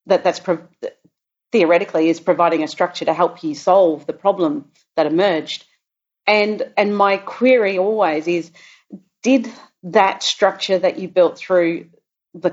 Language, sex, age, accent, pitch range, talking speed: English, female, 40-59, Australian, 165-195 Hz, 140 wpm